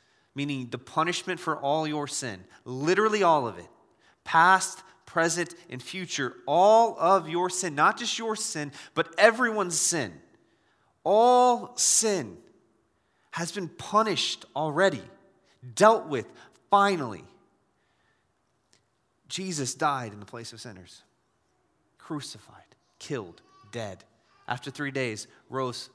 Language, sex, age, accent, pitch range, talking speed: English, male, 30-49, American, 120-165 Hz, 115 wpm